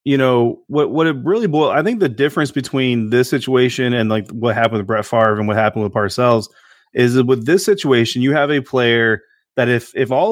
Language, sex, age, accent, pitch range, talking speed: English, male, 30-49, American, 110-140 Hz, 225 wpm